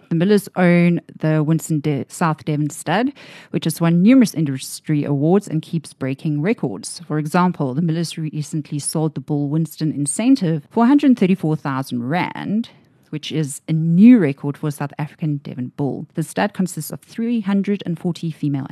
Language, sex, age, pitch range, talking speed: English, female, 30-49, 150-185 Hz, 155 wpm